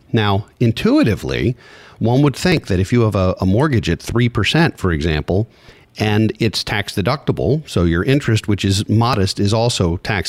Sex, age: male, 50-69